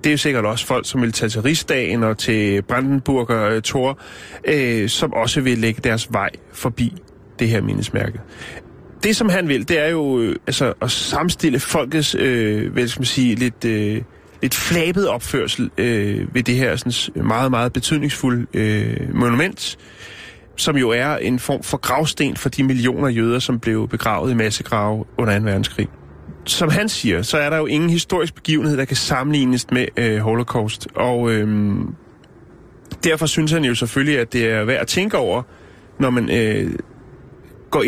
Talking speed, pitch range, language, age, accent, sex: 170 wpm, 110-135 Hz, Danish, 30-49, native, male